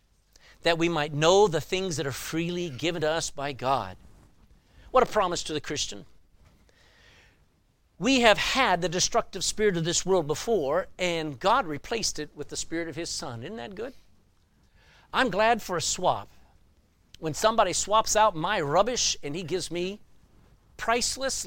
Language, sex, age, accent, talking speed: English, male, 50-69, American, 165 wpm